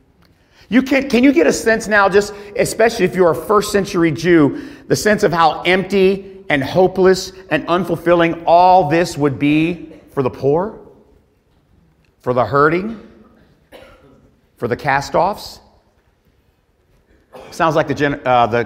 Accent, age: American, 50-69